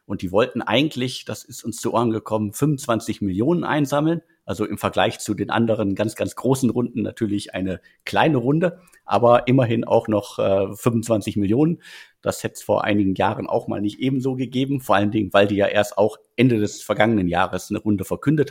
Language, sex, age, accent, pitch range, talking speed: German, male, 50-69, German, 100-115 Hz, 195 wpm